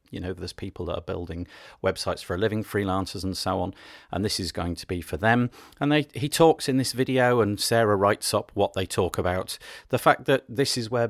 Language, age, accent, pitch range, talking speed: English, 40-59, British, 90-120 Hz, 240 wpm